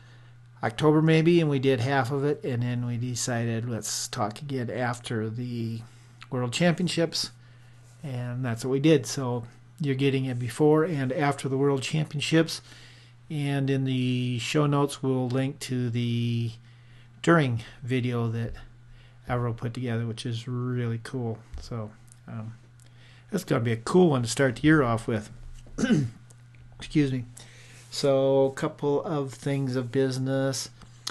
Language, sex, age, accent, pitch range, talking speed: English, male, 40-59, American, 120-130 Hz, 150 wpm